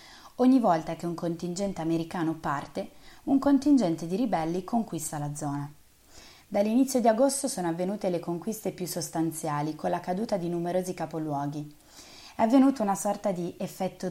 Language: Italian